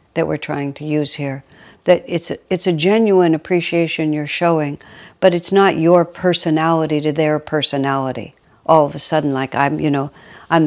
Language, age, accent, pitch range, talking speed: English, 60-79, American, 145-165 Hz, 180 wpm